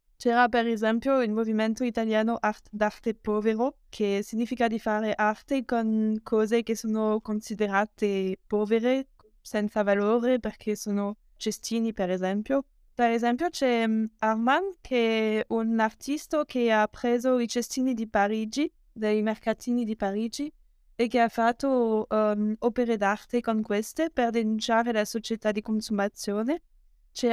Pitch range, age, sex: 215-240 Hz, 20-39, female